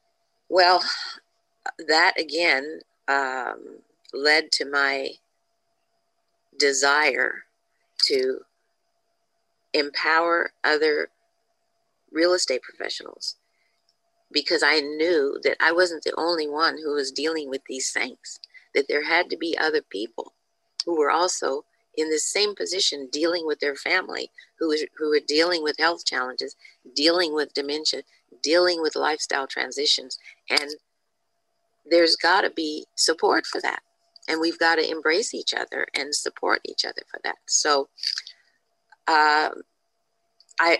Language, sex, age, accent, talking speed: English, female, 50-69, American, 125 wpm